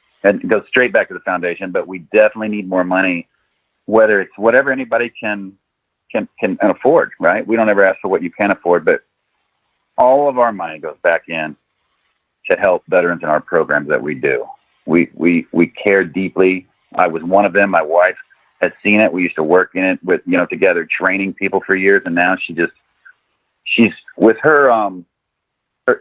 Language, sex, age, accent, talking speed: English, male, 40-59, American, 200 wpm